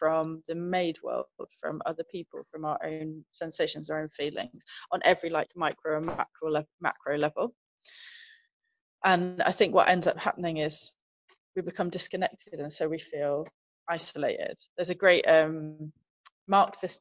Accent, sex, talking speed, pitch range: British, female, 150 wpm, 155-180 Hz